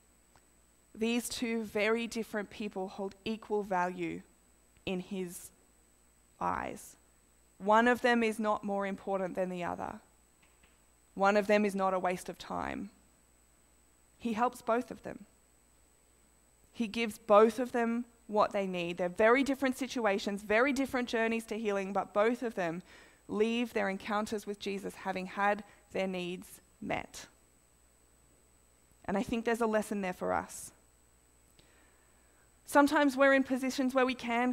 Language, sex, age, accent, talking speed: English, female, 20-39, Australian, 145 wpm